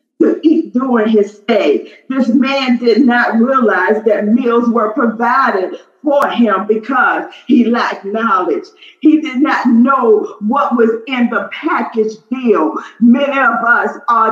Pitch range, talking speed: 235-290 Hz, 140 wpm